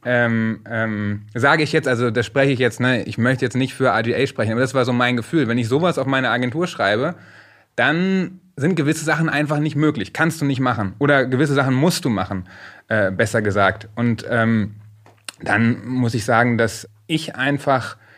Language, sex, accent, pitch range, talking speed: German, male, German, 120-145 Hz, 200 wpm